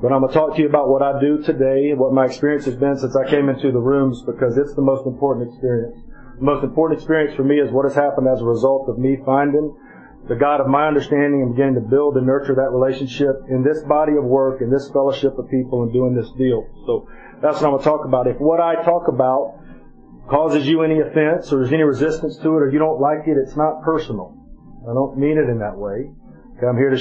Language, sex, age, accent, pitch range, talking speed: English, male, 40-59, American, 130-145 Hz, 255 wpm